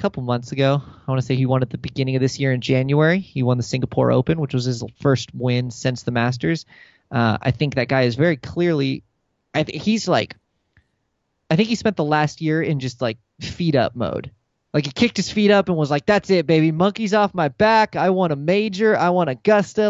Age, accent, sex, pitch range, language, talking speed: 20-39, American, male, 135-180 Hz, English, 230 wpm